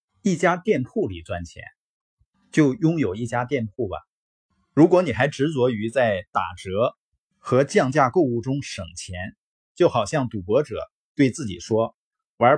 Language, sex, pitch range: Chinese, male, 95-140 Hz